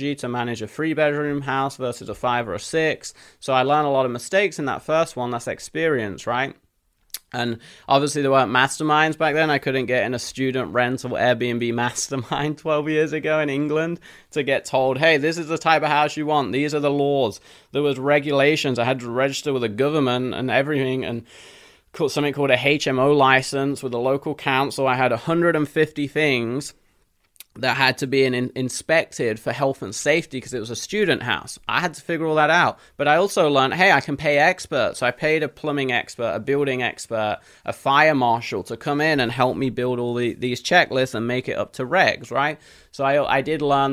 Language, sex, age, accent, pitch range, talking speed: English, male, 20-39, British, 125-150 Hz, 210 wpm